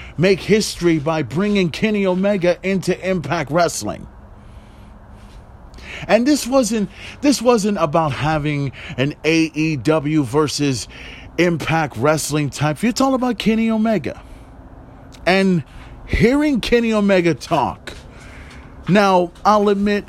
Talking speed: 100 wpm